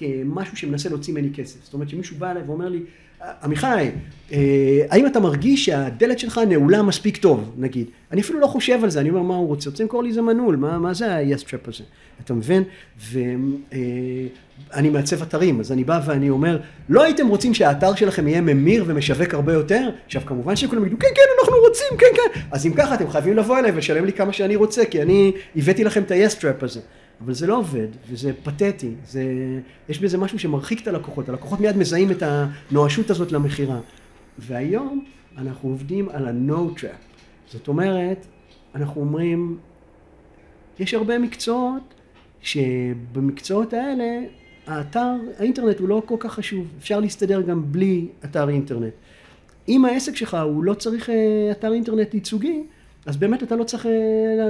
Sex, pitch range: male, 140-220 Hz